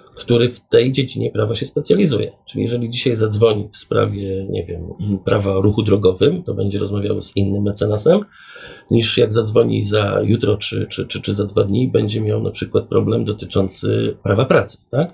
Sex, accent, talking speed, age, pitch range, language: male, native, 175 wpm, 40-59, 100-115 Hz, Polish